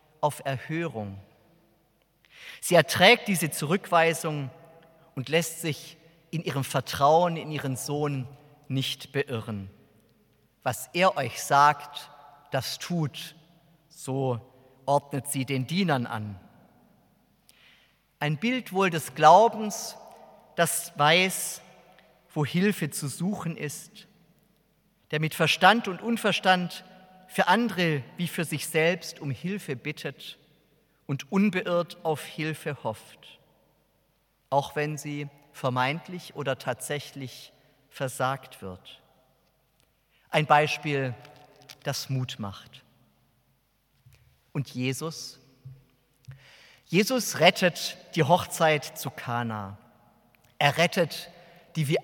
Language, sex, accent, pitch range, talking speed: German, male, German, 130-170 Hz, 100 wpm